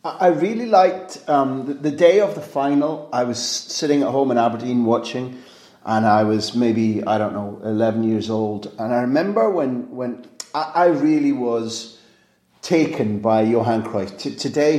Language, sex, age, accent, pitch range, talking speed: English, male, 30-49, British, 115-150 Hz, 170 wpm